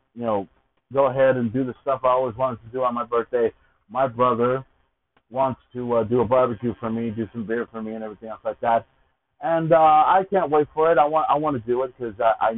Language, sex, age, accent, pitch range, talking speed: English, male, 30-49, American, 110-150 Hz, 255 wpm